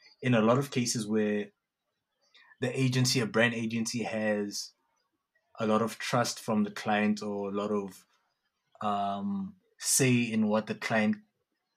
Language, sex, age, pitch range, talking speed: English, male, 20-39, 100-115 Hz, 150 wpm